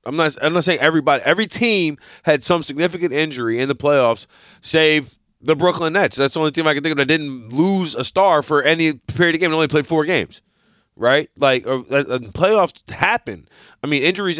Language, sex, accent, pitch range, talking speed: English, male, American, 115-155 Hz, 205 wpm